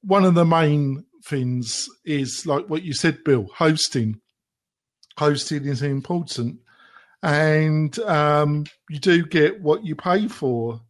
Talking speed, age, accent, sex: 130 wpm, 50-69, British, male